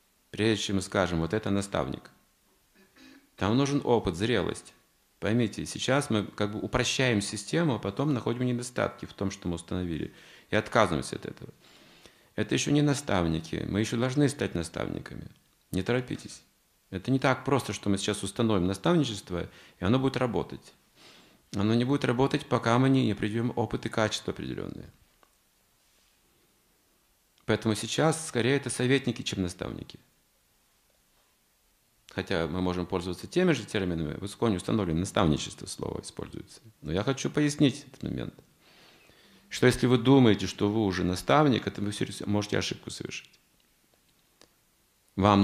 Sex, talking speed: male, 140 wpm